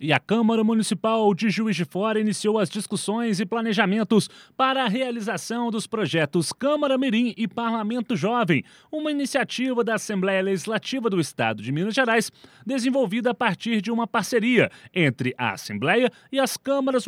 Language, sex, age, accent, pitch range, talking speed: Portuguese, male, 30-49, Brazilian, 170-235 Hz, 160 wpm